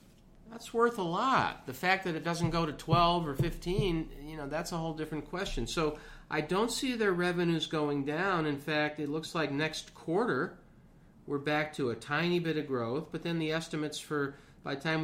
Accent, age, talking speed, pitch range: American, 50-69, 210 wpm, 130-160 Hz